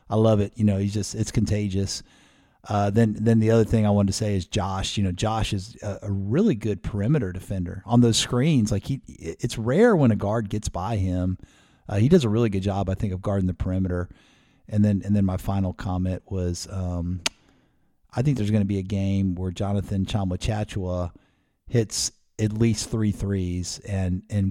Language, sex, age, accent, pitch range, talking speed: English, male, 50-69, American, 95-115 Hz, 205 wpm